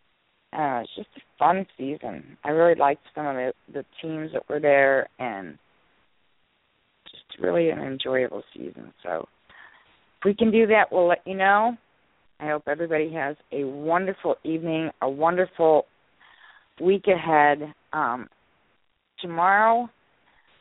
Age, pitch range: 40-59, 140-185 Hz